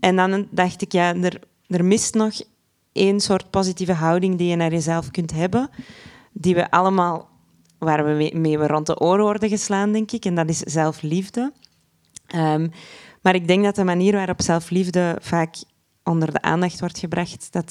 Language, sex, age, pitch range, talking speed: Dutch, female, 20-39, 165-195 Hz, 185 wpm